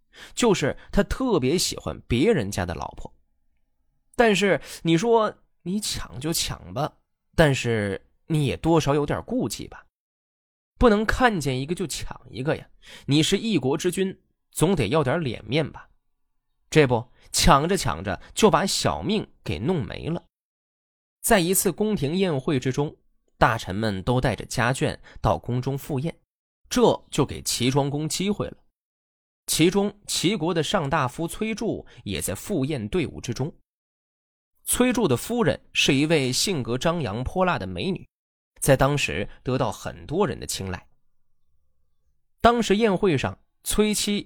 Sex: male